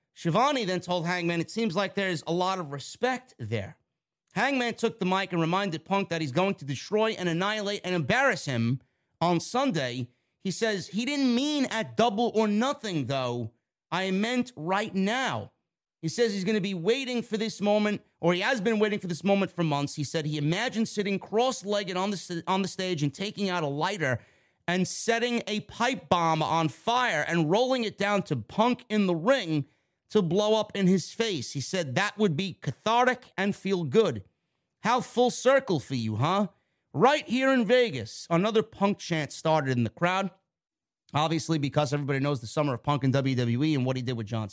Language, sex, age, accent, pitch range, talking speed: English, male, 30-49, American, 150-215 Hz, 195 wpm